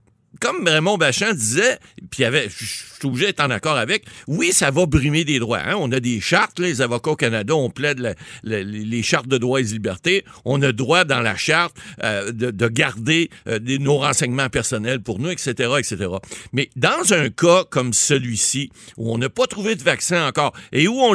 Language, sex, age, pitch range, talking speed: French, male, 60-79, 115-155 Hz, 205 wpm